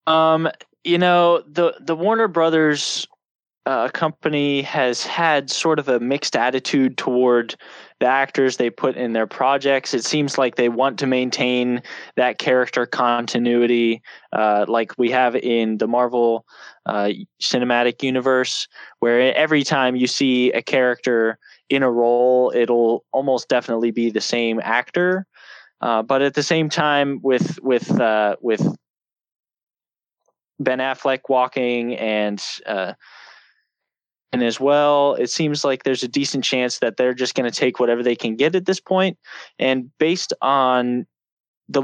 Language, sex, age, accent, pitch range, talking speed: English, male, 10-29, American, 120-140 Hz, 150 wpm